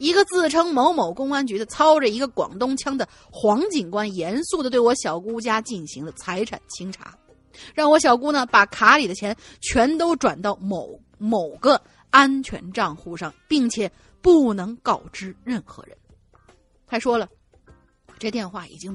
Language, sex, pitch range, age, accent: Chinese, female, 195-275 Hz, 30-49, native